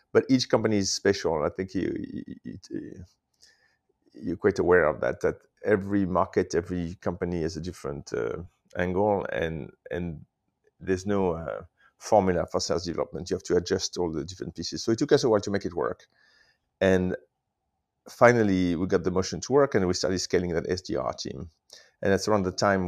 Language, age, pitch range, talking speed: English, 30-49, 90-105 Hz, 185 wpm